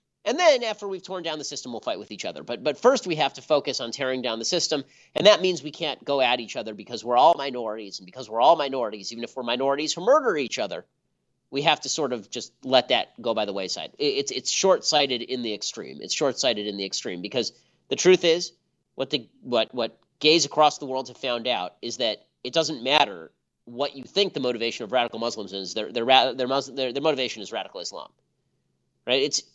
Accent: American